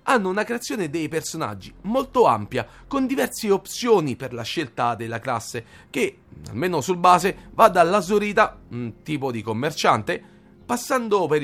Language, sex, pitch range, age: Italian, male, 140-210 Hz, 40-59